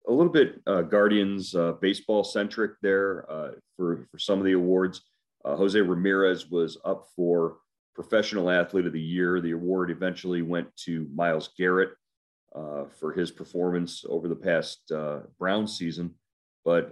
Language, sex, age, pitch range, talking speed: English, male, 40-59, 85-95 Hz, 155 wpm